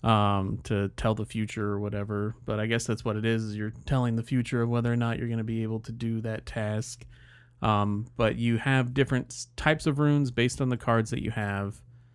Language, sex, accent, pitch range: English, male, American, 105-120 Hz